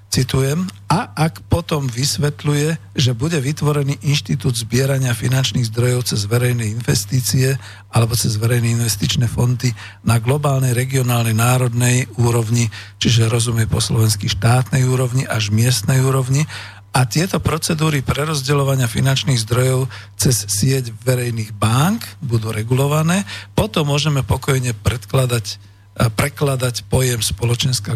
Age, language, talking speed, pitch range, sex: 50-69, Slovak, 110 wpm, 115-140 Hz, male